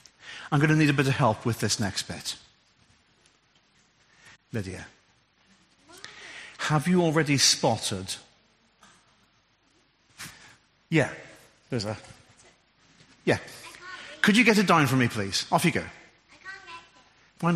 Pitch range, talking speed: 145-200 Hz, 120 wpm